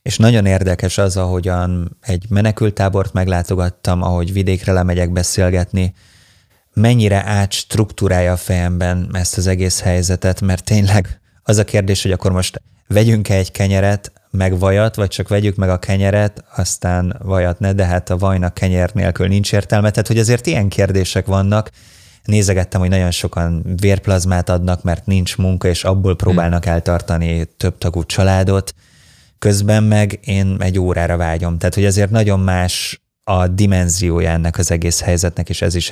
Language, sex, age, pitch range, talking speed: Hungarian, male, 20-39, 90-100 Hz, 155 wpm